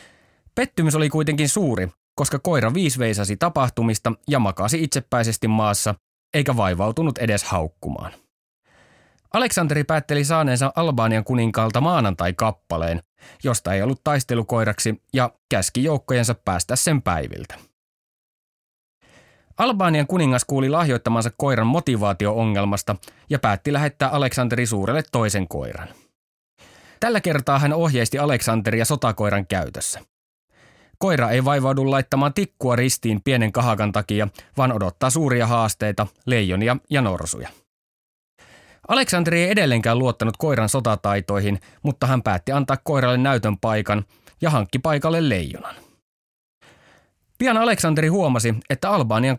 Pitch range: 105-145 Hz